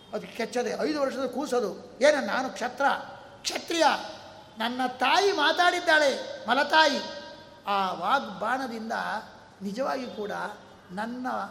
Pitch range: 205-275 Hz